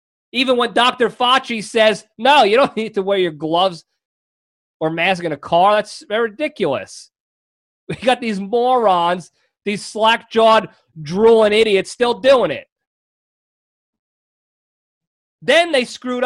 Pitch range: 190-245 Hz